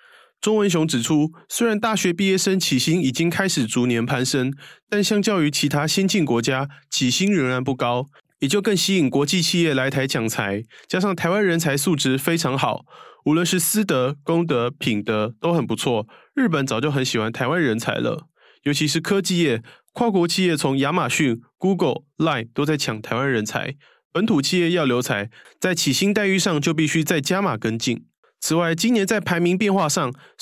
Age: 20-39